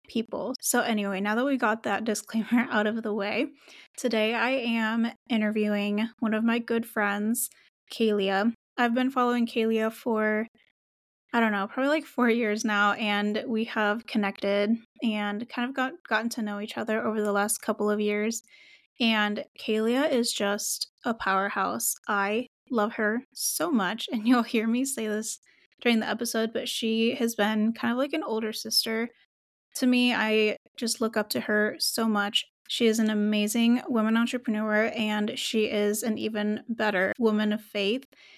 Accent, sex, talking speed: American, female, 170 wpm